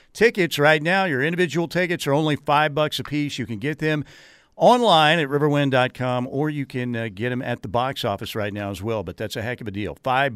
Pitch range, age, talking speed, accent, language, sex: 115-150 Hz, 50-69, 240 wpm, American, English, male